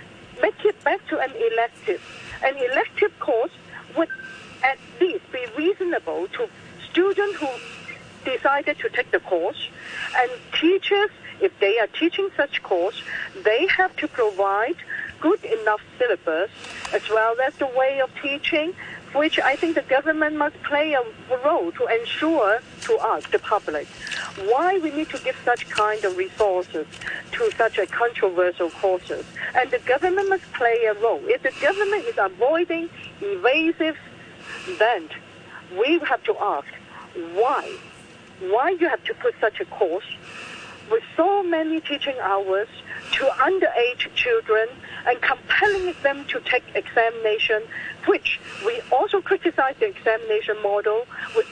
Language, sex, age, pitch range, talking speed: English, female, 50-69, 250-405 Hz, 140 wpm